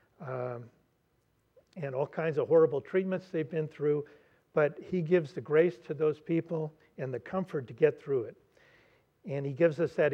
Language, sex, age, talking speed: English, male, 50-69, 180 wpm